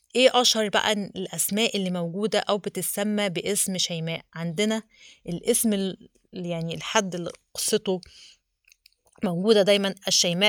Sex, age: female, 20-39